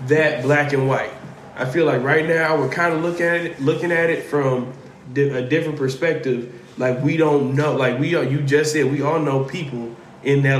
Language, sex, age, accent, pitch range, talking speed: English, male, 20-39, American, 135-160 Hz, 215 wpm